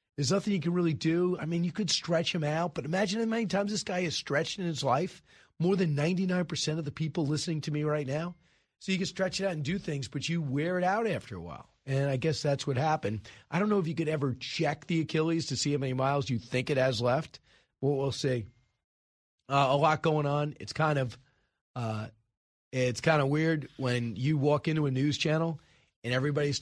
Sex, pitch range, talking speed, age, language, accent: male, 130-160 Hz, 235 wpm, 30-49, English, American